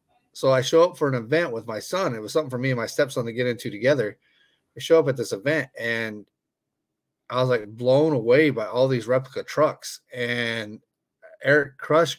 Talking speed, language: 205 wpm, English